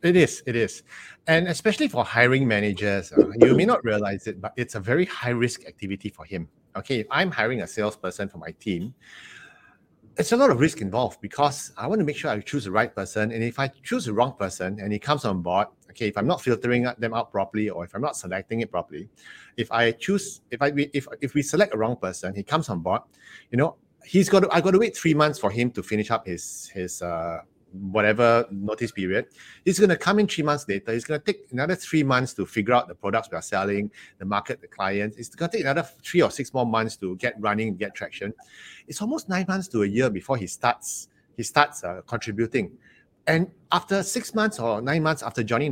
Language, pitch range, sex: English, 105-155 Hz, male